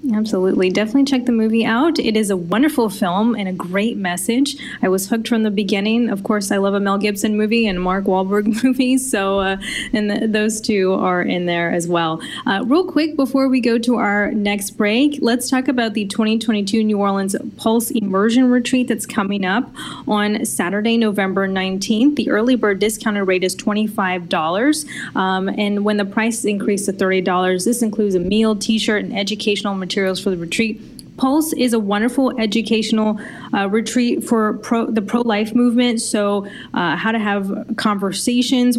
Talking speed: 180 wpm